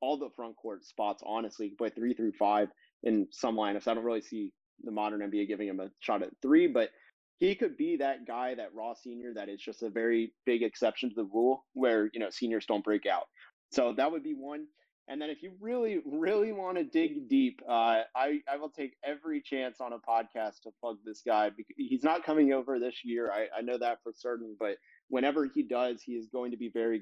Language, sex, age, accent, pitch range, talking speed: English, male, 30-49, American, 110-140 Hz, 230 wpm